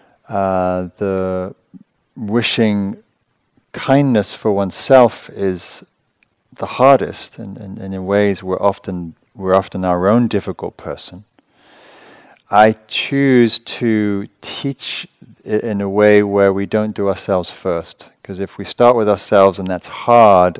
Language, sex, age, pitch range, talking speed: English, male, 40-59, 90-100 Hz, 130 wpm